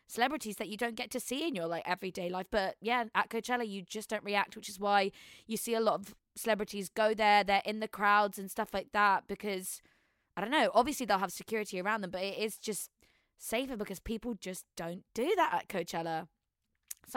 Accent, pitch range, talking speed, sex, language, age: British, 185-225 Hz, 215 wpm, female, English, 20-39